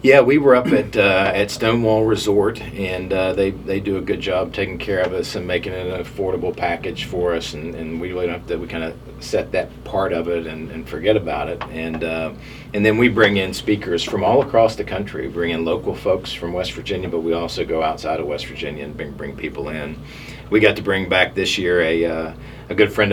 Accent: American